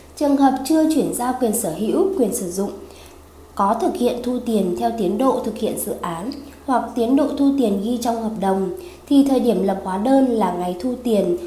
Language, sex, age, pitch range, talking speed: Vietnamese, female, 20-39, 200-265 Hz, 220 wpm